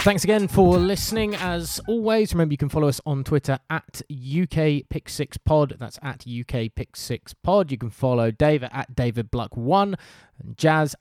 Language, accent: English, British